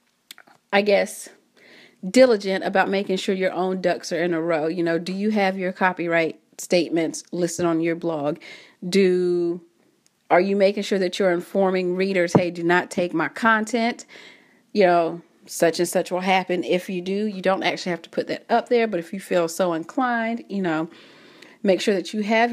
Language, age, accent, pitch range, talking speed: English, 40-59, American, 175-210 Hz, 190 wpm